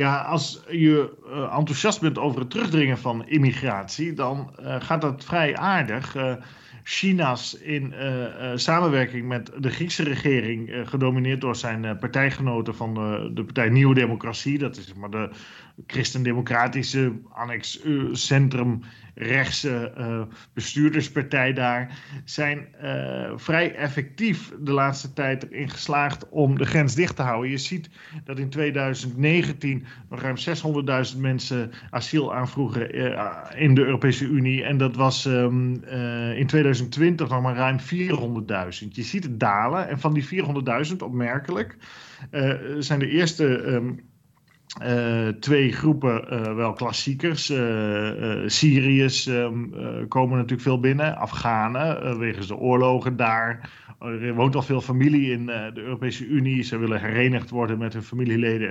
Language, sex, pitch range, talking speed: Dutch, male, 120-145 Hz, 145 wpm